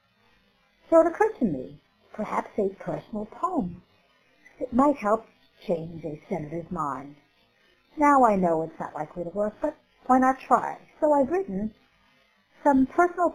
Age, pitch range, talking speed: 60-79, 185-290 Hz, 150 wpm